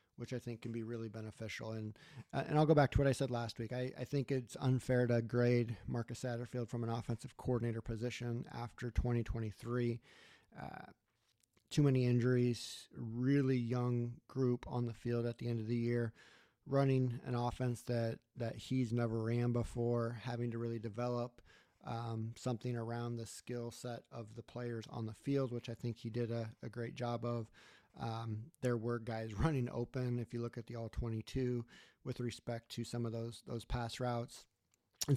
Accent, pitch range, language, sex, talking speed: American, 115-125 Hz, English, male, 185 wpm